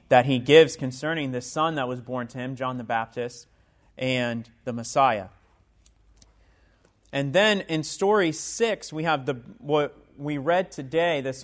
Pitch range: 125-155 Hz